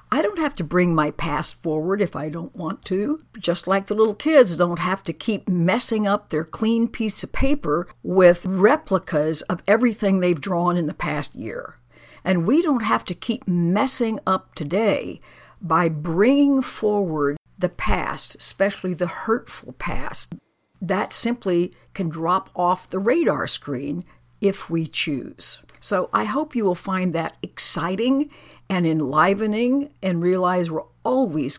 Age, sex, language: 60-79, female, English